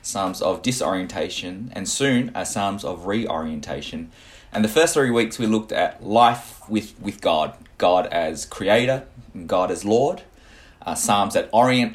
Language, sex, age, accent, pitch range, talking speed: English, male, 20-39, Australian, 105-120 Hz, 155 wpm